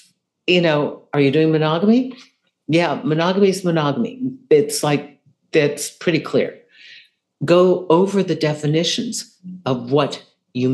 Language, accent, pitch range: English, American, 140-195 Hz